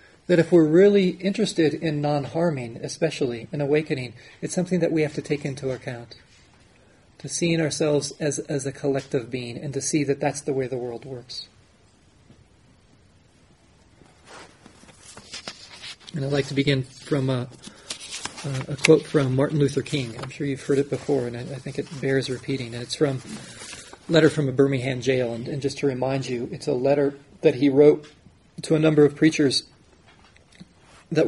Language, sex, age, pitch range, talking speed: English, male, 30-49, 130-155 Hz, 175 wpm